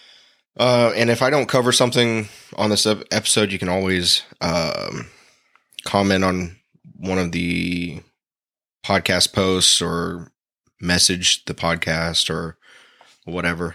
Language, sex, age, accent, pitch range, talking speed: English, male, 20-39, American, 90-105 Hz, 120 wpm